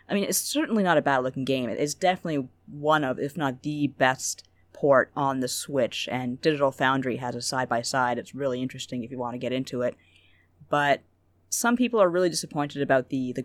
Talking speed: 205 wpm